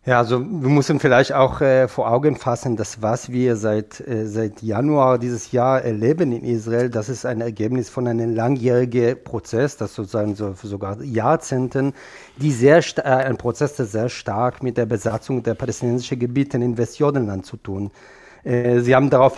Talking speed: 185 wpm